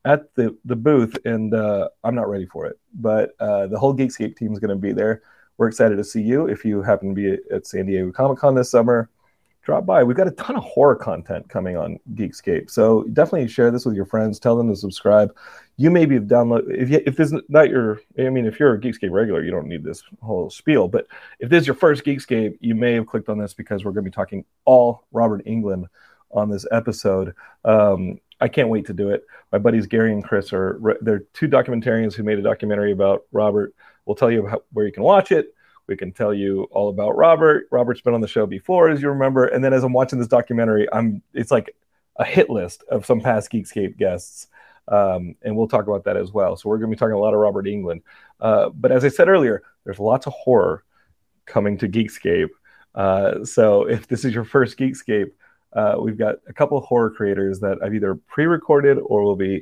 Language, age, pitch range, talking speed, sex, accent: English, 30-49, 105-130 Hz, 230 wpm, male, American